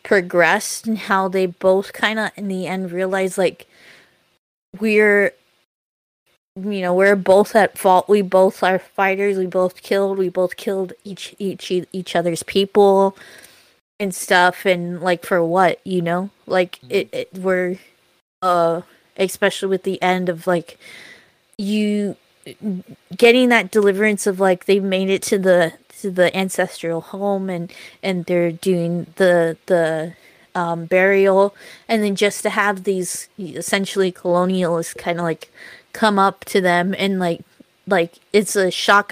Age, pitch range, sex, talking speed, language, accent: 20-39, 180-205 Hz, female, 150 wpm, English, American